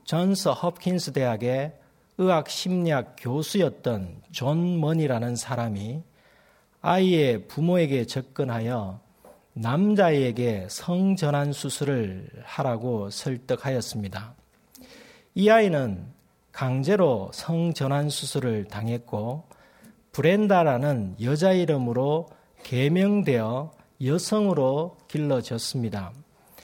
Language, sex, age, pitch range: Korean, male, 40-59, 120-180 Hz